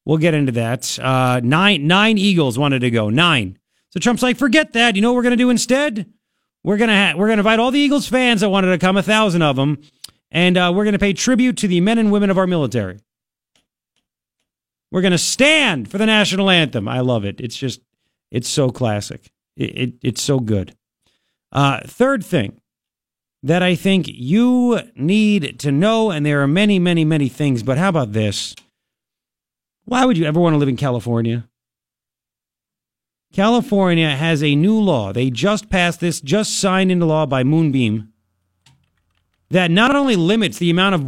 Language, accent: English, American